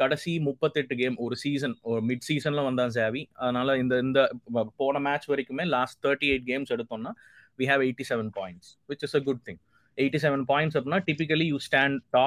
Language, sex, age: Tamil, male, 20-39